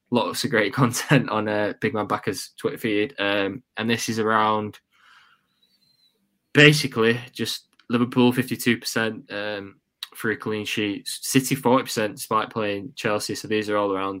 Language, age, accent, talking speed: English, 10-29, British, 150 wpm